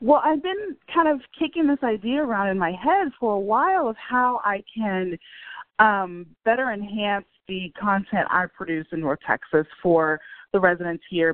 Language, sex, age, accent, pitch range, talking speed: English, female, 30-49, American, 175-240 Hz, 175 wpm